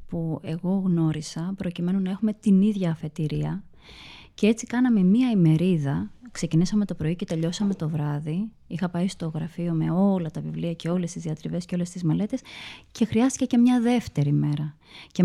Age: 20-39